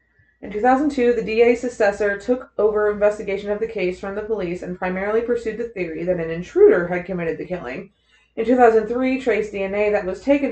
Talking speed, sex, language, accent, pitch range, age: 190 wpm, female, English, American, 185-225 Hz, 20-39